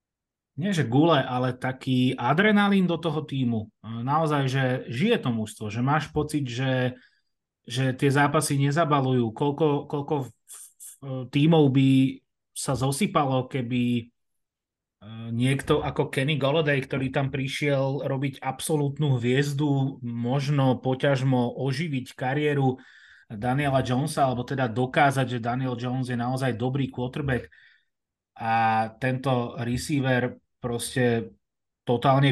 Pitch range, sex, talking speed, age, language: 120-140 Hz, male, 110 wpm, 30-49, Slovak